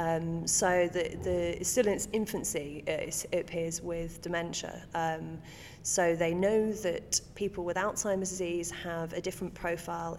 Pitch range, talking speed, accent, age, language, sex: 165-200 Hz, 160 wpm, British, 30-49, English, female